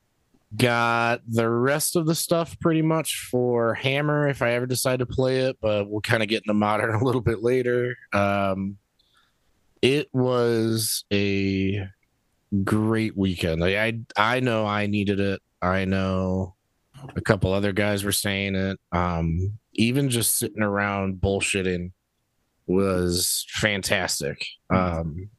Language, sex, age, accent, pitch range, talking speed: English, male, 30-49, American, 100-115 Hz, 140 wpm